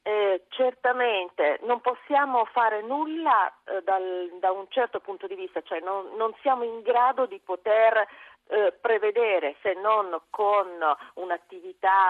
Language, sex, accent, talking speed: Italian, female, native, 140 wpm